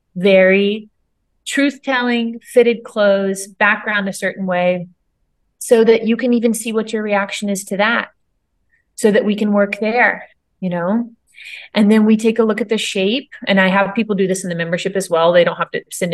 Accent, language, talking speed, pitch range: American, English, 200 wpm, 185-235 Hz